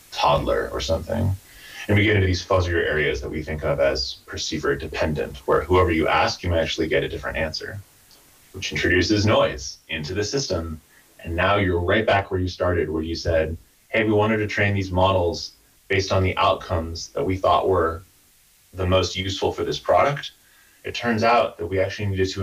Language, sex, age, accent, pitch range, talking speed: English, male, 20-39, American, 80-95 Hz, 200 wpm